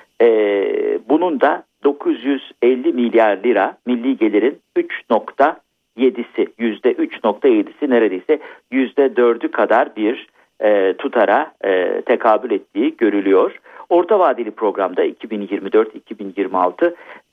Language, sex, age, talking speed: Turkish, male, 50-69, 85 wpm